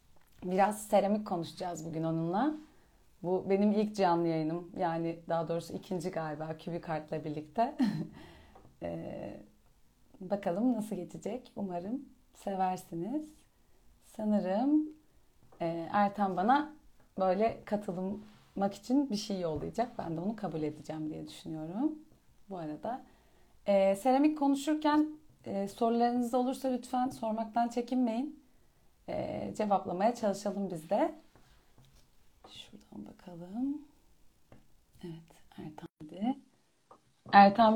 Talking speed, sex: 95 wpm, female